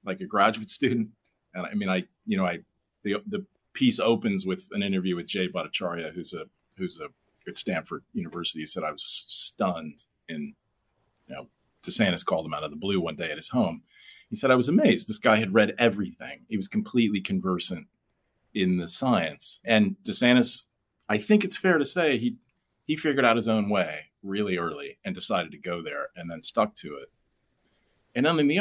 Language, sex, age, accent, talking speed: English, male, 40-59, American, 200 wpm